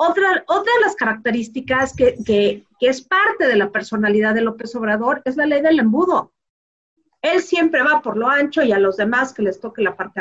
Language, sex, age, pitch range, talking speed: Spanish, female, 40-59, 220-295 Hz, 210 wpm